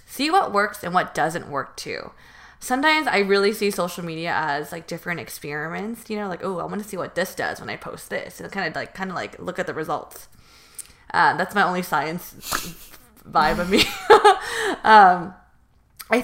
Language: English